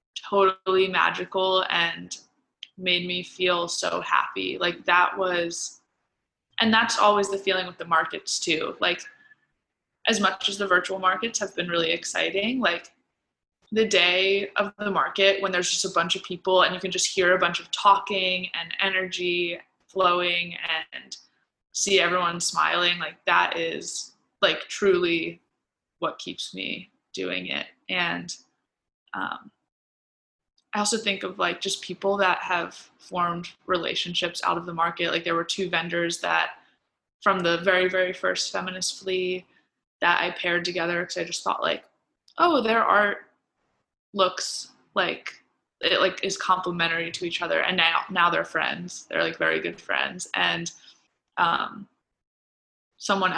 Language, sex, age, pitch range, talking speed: English, female, 20-39, 170-195 Hz, 150 wpm